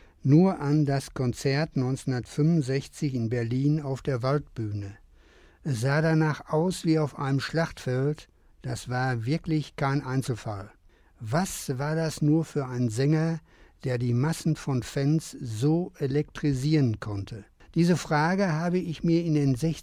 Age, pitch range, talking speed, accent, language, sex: 60-79, 125-155 Hz, 135 wpm, German, German, male